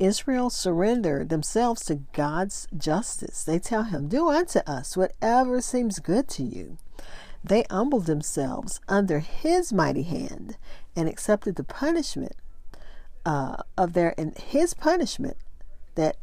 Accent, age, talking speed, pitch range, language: American, 50-69, 130 wpm, 150-200 Hz, English